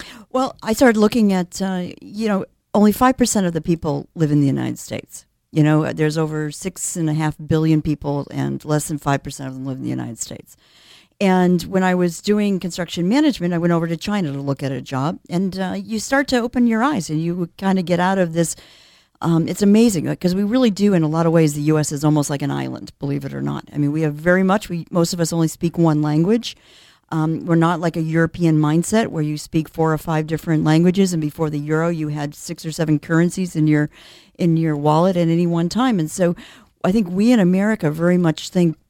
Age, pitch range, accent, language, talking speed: 50-69, 155-190 Hz, American, English, 235 wpm